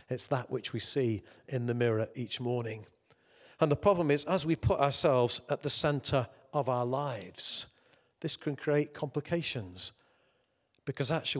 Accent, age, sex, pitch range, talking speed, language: British, 40-59, male, 120-150 Hz, 160 wpm, English